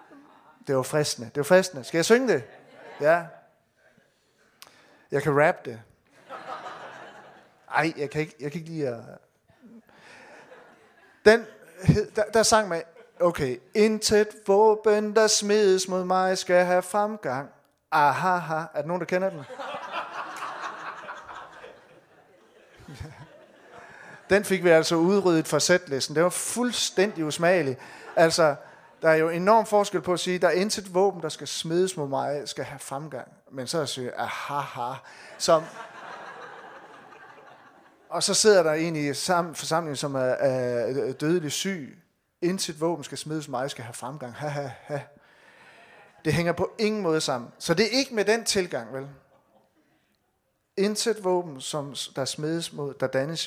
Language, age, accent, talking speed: Danish, 30-49, native, 155 wpm